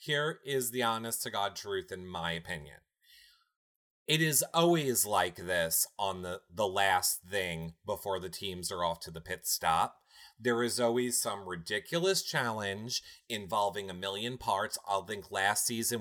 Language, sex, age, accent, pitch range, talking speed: English, male, 30-49, American, 95-160 Hz, 155 wpm